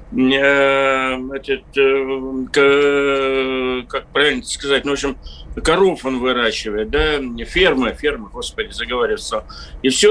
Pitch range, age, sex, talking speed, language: 135-175 Hz, 60-79, male, 105 wpm, Russian